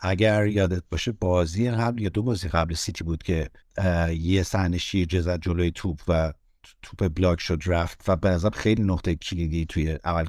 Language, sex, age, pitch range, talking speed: Persian, male, 50-69, 90-110 Hz, 170 wpm